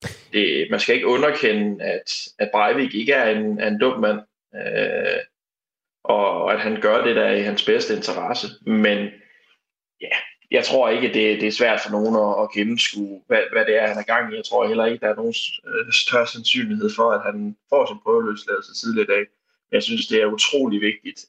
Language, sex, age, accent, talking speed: Danish, male, 20-39, native, 205 wpm